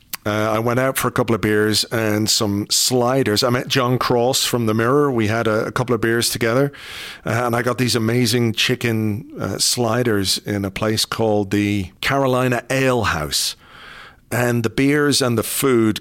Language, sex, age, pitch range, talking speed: English, male, 40-59, 110-135 Hz, 185 wpm